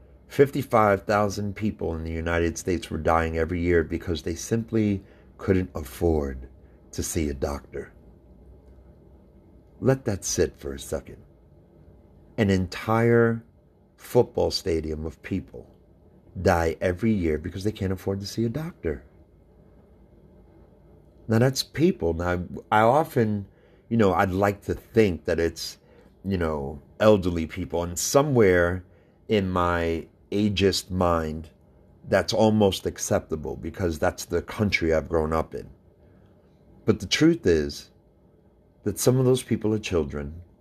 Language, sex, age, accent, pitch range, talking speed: English, male, 50-69, American, 80-105 Hz, 130 wpm